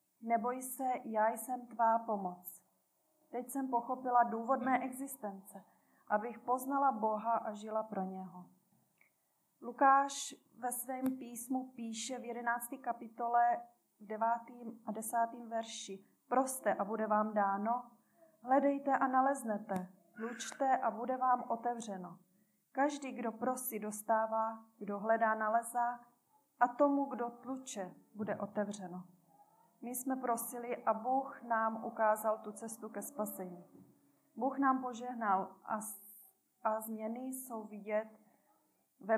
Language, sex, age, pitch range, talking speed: Czech, female, 30-49, 215-250 Hz, 120 wpm